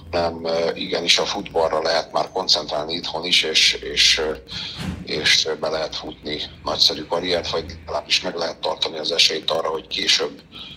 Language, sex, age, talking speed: Hungarian, male, 50-69, 155 wpm